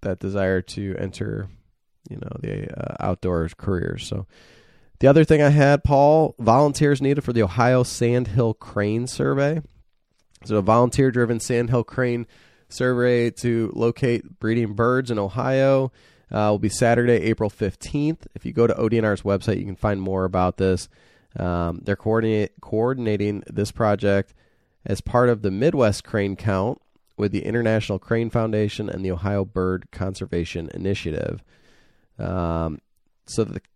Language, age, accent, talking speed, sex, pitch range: English, 30-49, American, 150 wpm, male, 100-120 Hz